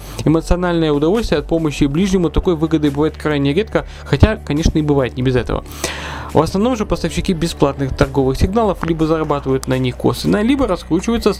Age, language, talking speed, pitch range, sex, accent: 20-39, Russian, 170 wpm, 135-180 Hz, male, native